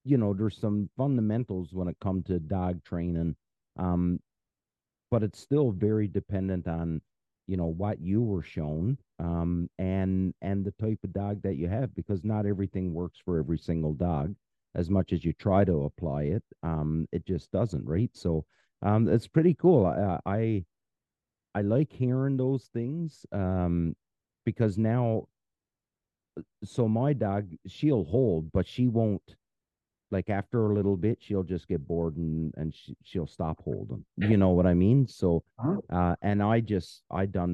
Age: 40-59